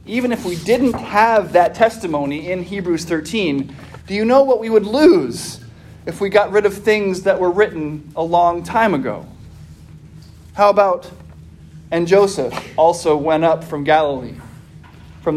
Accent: American